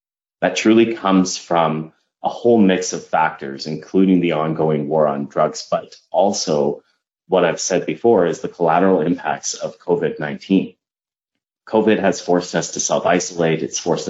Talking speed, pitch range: 150 wpm, 80-95 Hz